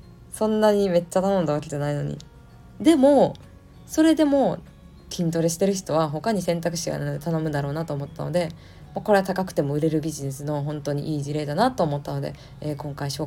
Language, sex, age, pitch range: Japanese, female, 20-39, 150-200 Hz